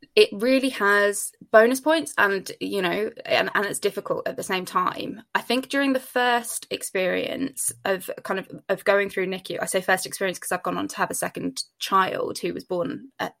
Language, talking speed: English, 205 wpm